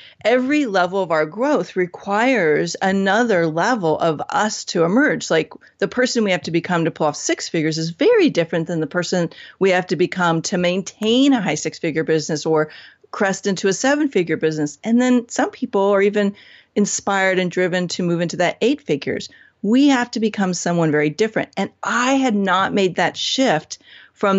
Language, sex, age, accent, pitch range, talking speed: English, female, 40-59, American, 170-220 Hz, 190 wpm